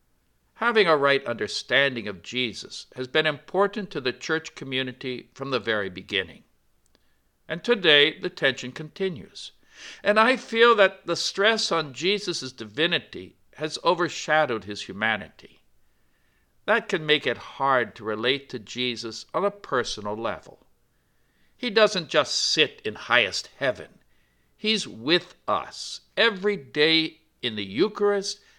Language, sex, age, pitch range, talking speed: English, male, 60-79, 125-200 Hz, 130 wpm